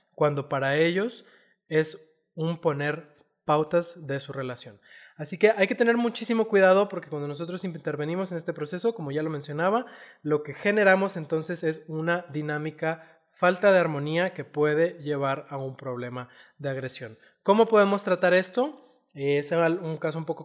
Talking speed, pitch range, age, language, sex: 160 wpm, 140-180 Hz, 20-39, Spanish, male